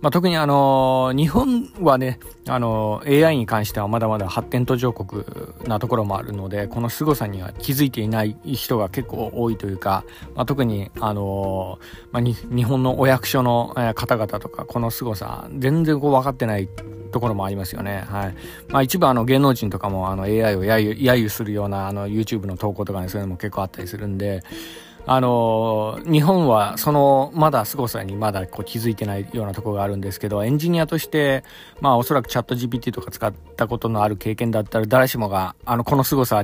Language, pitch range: Japanese, 105-130 Hz